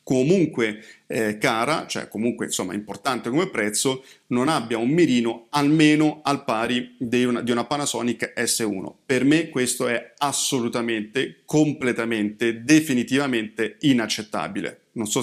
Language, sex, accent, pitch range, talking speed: Italian, male, native, 115-145 Hz, 125 wpm